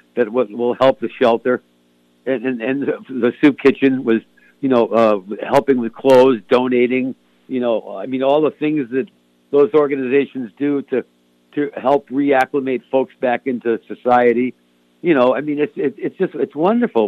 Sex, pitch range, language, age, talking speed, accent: male, 110-140 Hz, English, 60-79, 170 wpm, American